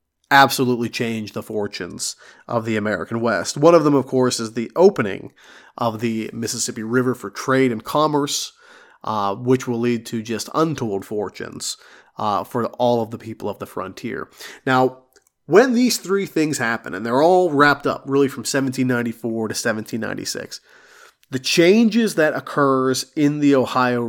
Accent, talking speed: American, 160 wpm